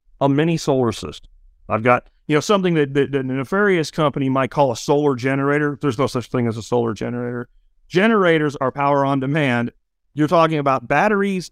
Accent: American